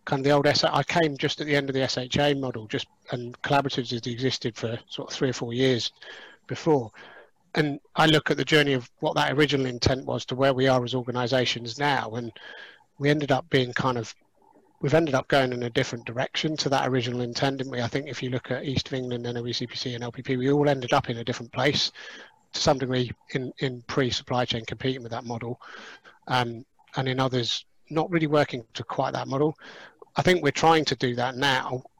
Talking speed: 220 wpm